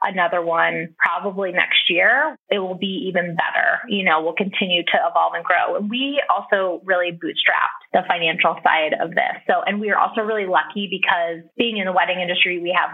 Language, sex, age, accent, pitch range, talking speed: English, female, 20-39, American, 175-220 Hz, 200 wpm